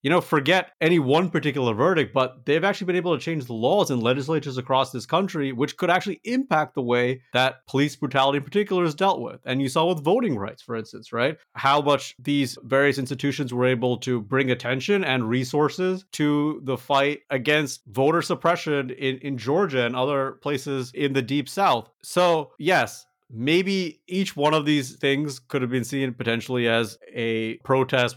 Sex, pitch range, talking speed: male, 125-155 Hz, 185 wpm